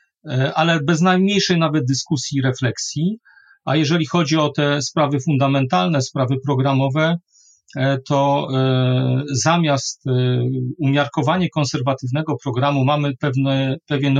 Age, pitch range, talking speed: 40-59, 135-170 Hz, 95 wpm